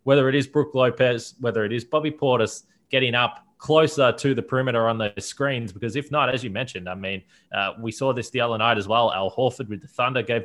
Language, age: English, 20-39